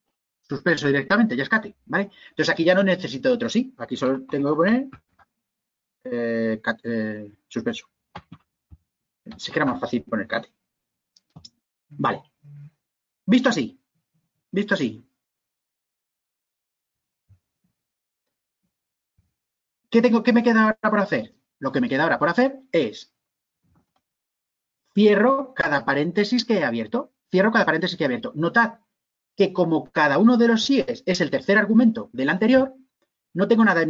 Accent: Spanish